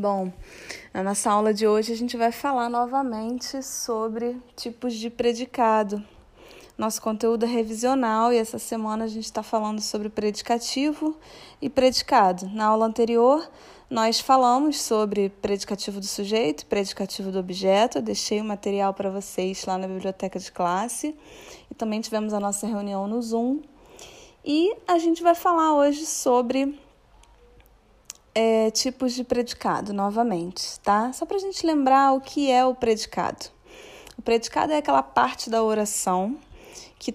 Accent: Brazilian